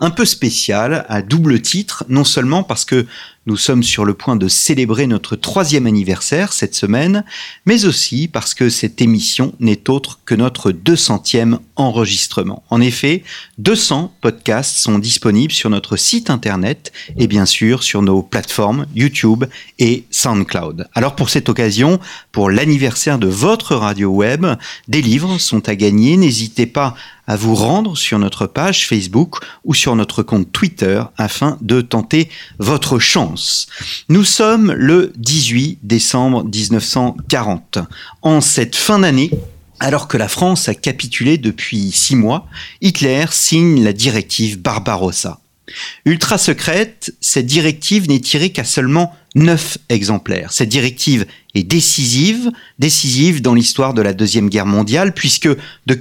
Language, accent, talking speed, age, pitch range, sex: French, French, 145 wpm, 40-59, 110-155 Hz, male